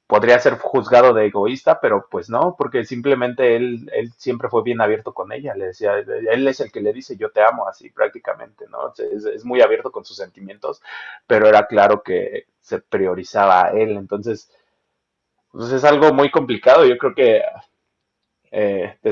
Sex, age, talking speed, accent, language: male, 30-49, 180 wpm, Mexican, Spanish